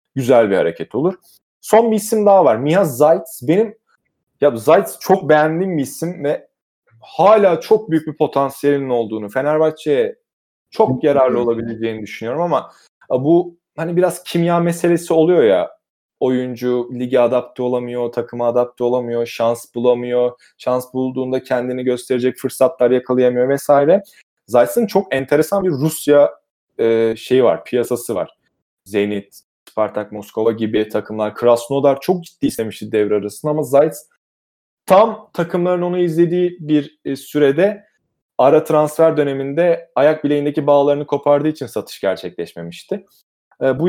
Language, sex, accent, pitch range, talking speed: Turkish, male, native, 125-165 Hz, 125 wpm